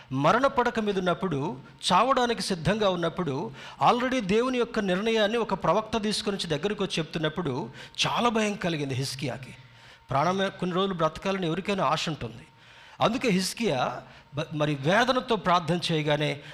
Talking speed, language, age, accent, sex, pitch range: 120 wpm, Telugu, 50-69, native, male, 140-195 Hz